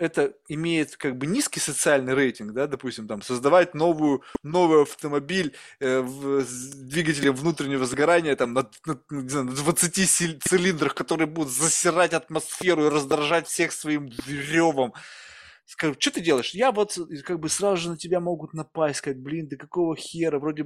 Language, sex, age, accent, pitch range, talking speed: Russian, male, 20-39, native, 135-175 Hz, 160 wpm